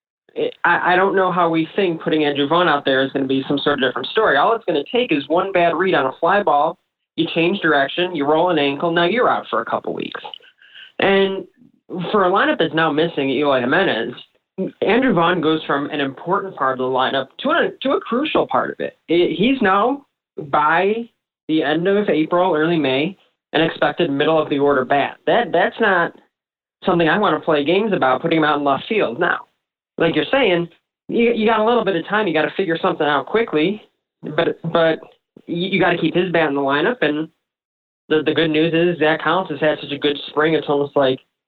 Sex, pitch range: male, 145-180 Hz